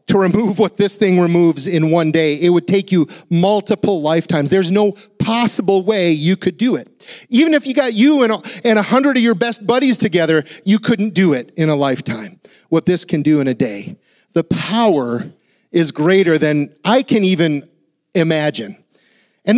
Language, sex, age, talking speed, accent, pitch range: English, male, 40-59, 190 wpm, American, 155-205 Hz